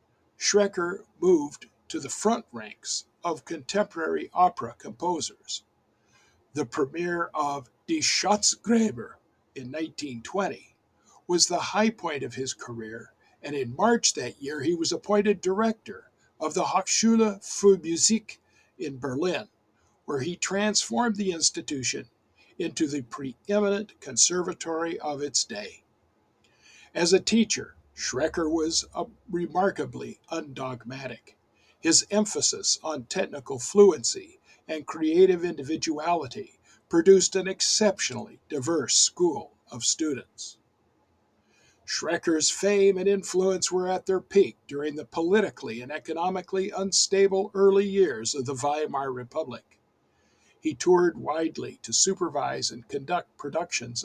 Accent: American